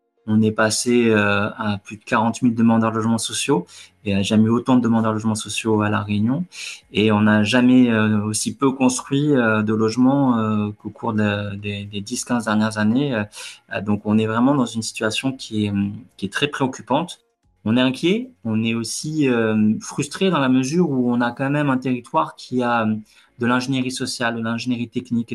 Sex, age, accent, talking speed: male, 20-39, French, 205 wpm